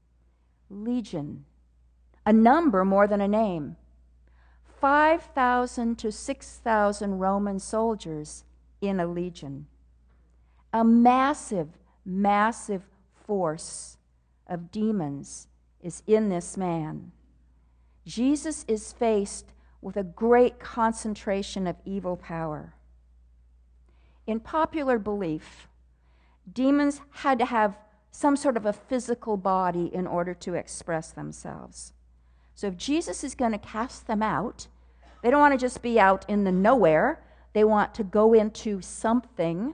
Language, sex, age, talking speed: English, female, 50-69, 120 wpm